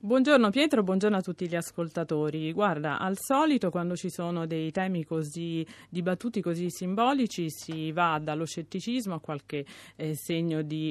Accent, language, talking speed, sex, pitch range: native, Italian, 155 wpm, female, 155-205 Hz